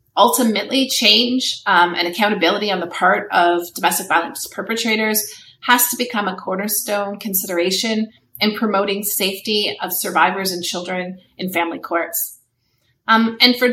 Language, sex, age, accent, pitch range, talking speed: English, female, 30-49, American, 180-230 Hz, 135 wpm